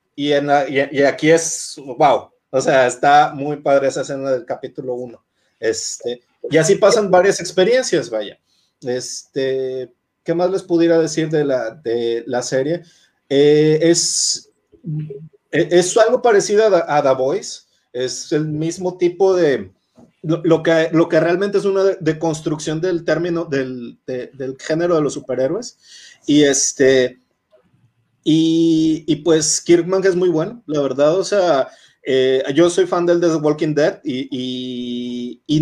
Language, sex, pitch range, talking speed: Spanish, male, 135-175 Hz, 150 wpm